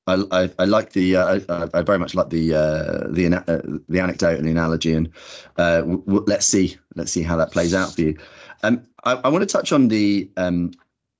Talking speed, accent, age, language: 225 wpm, British, 30-49, English